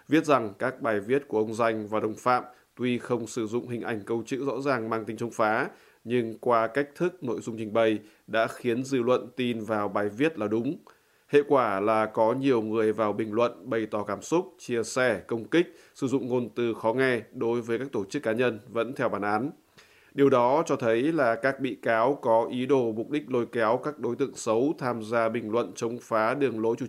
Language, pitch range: Vietnamese, 115-130 Hz